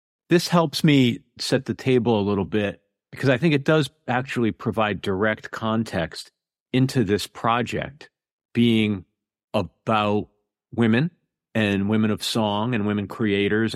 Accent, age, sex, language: American, 50-69, male, English